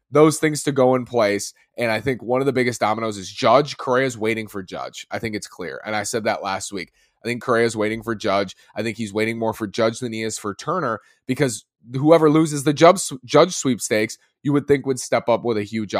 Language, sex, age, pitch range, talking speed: English, male, 20-39, 105-130 Hz, 235 wpm